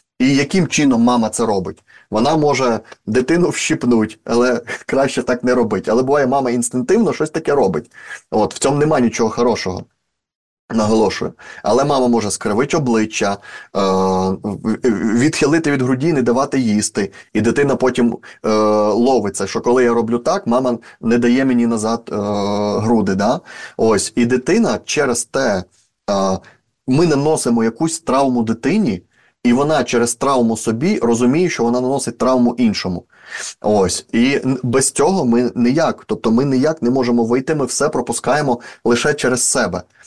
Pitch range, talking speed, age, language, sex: 115-130 Hz, 140 wpm, 30-49, Ukrainian, male